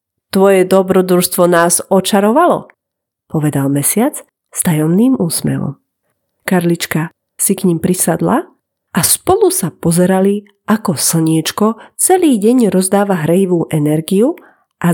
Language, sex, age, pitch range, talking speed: Slovak, female, 40-59, 165-225 Hz, 105 wpm